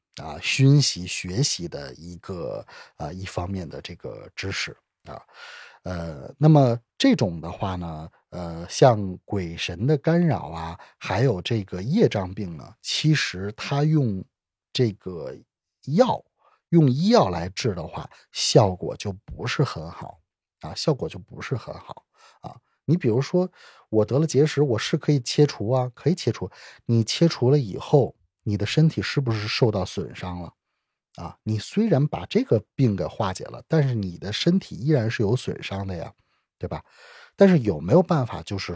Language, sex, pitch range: Chinese, male, 95-150 Hz